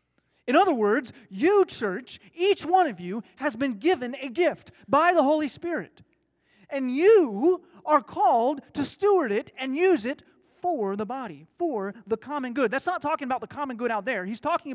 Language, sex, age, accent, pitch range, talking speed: English, male, 30-49, American, 170-255 Hz, 185 wpm